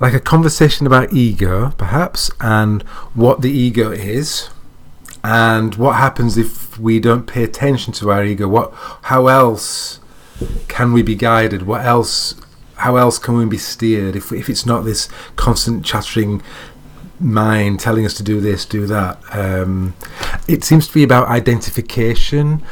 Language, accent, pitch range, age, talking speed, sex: English, British, 110-130 Hz, 30-49, 155 wpm, male